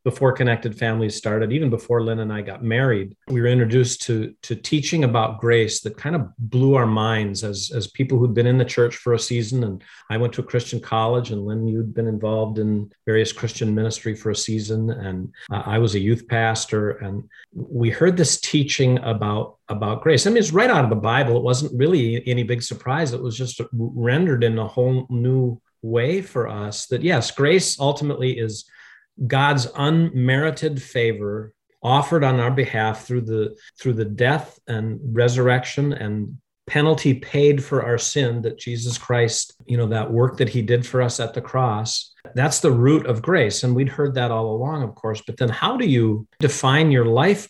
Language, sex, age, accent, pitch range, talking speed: English, male, 50-69, American, 110-135 Hz, 195 wpm